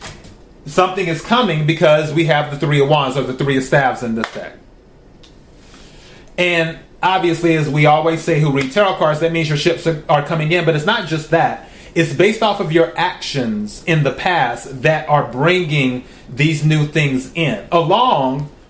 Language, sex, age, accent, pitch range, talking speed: English, male, 30-49, American, 150-185 Hz, 185 wpm